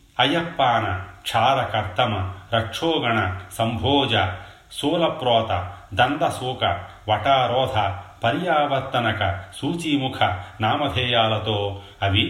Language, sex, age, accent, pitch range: Telugu, male, 40-59, native, 100-115 Hz